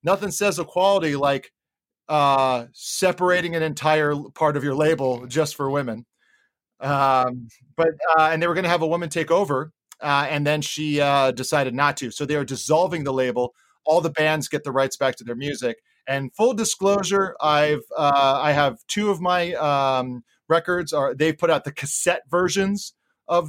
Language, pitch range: English, 135-165 Hz